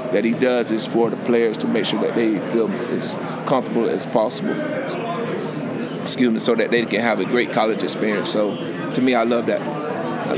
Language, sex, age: English, male, 30-49